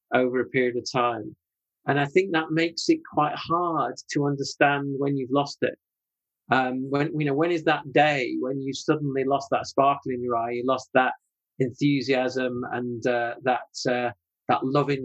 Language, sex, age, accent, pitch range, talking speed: English, male, 40-59, British, 125-150 Hz, 185 wpm